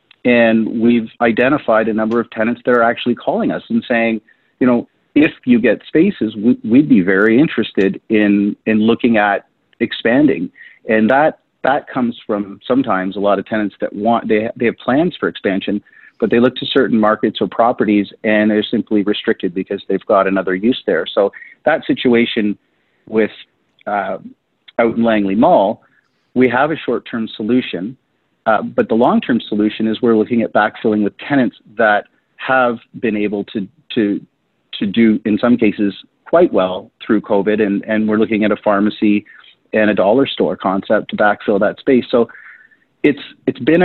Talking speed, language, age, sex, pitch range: 175 wpm, English, 40-59, male, 105-125 Hz